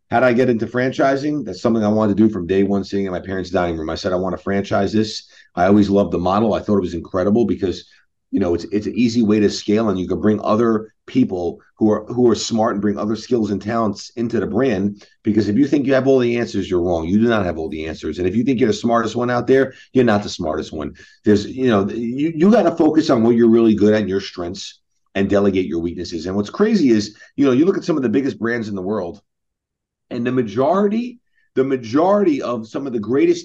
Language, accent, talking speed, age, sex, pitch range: English, American, 265 wpm, 40-59, male, 95-120 Hz